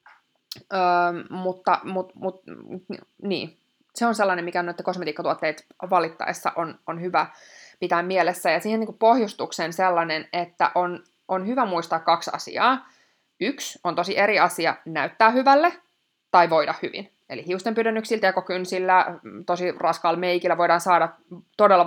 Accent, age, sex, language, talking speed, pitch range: native, 20-39, female, Finnish, 130 wpm, 170-205 Hz